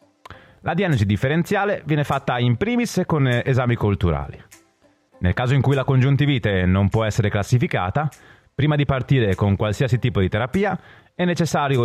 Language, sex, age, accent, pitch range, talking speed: Italian, male, 30-49, native, 100-155 Hz, 150 wpm